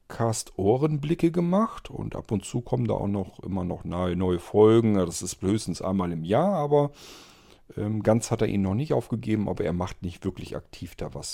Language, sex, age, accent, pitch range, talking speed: German, male, 50-69, German, 95-125 Hz, 200 wpm